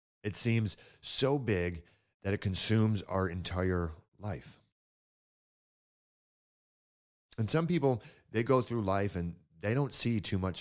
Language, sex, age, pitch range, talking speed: English, male, 40-59, 90-120 Hz, 130 wpm